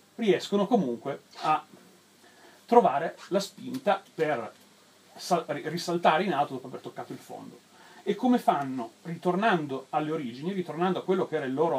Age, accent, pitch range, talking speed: 40-59, native, 145-190 Hz, 145 wpm